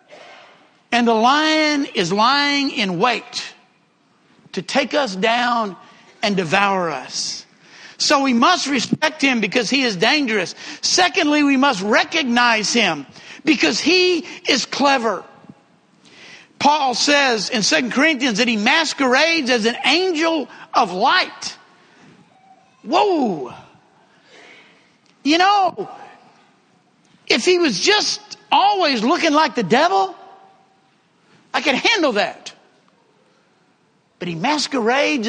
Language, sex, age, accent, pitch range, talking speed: English, male, 60-79, American, 235-325 Hz, 110 wpm